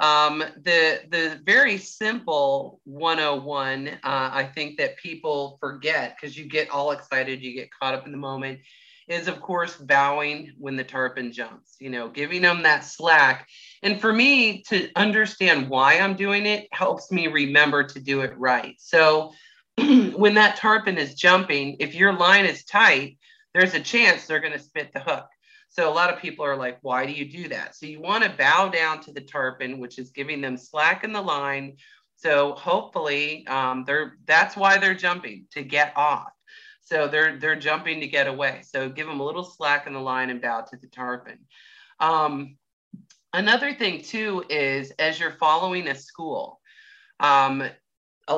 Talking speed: 180 wpm